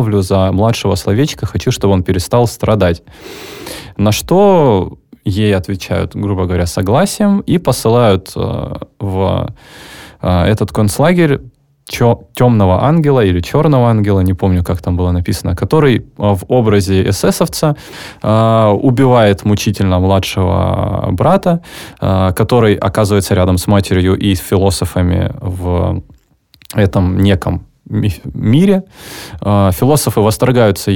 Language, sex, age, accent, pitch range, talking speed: Russian, male, 20-39, native, 95-120 Hz, 110 wpm